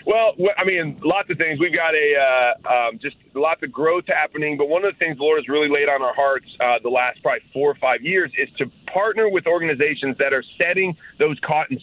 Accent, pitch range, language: American, 135-170 Hz, English